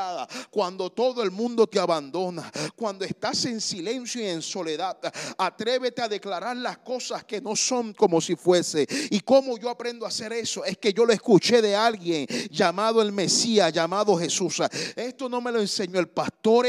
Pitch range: 185-240 Hz